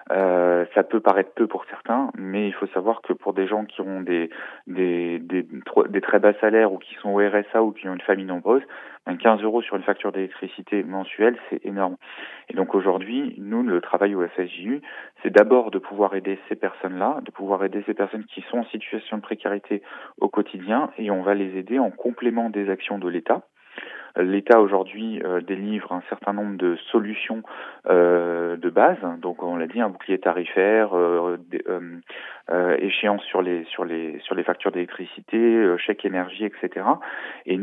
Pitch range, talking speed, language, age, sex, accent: 95-110 Hz, 180 wpm, French, 30-49, male, French